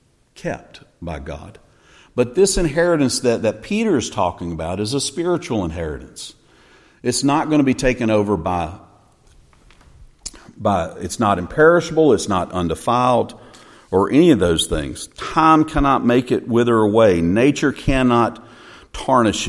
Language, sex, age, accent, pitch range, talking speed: English, male, 50-69, American, 90-130 Hz, 140 wpm